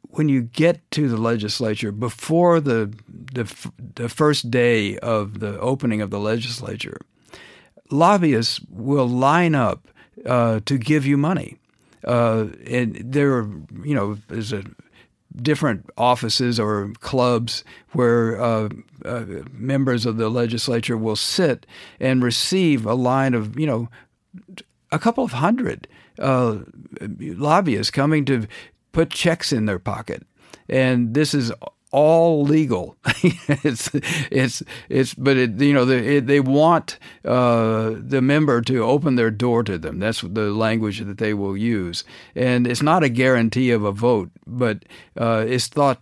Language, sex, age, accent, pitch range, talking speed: English, male, 60-79, American, 110-135 Hz, 145 wpm